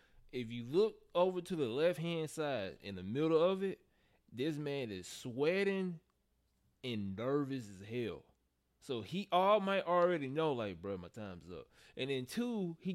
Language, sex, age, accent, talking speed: English, male, 20-39, American, 170 wpm